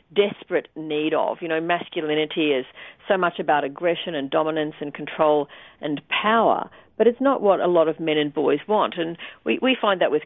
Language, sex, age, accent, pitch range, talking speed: English, female, 50-69, Australian, 150-185 Hz, 200 wpm